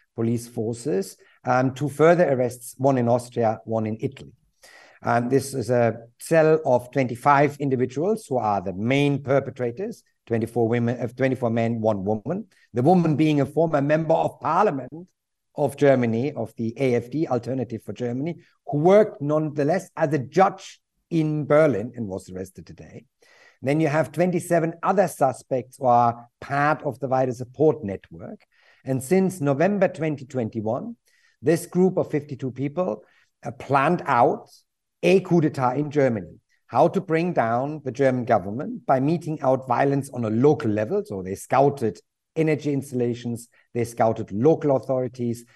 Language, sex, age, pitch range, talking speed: English, male, 50-69, 120-155 Hz, 150 wpm